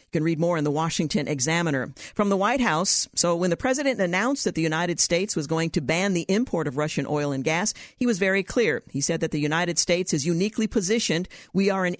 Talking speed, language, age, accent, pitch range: 235 wpm, English, 50-69, American, 160-205 Hz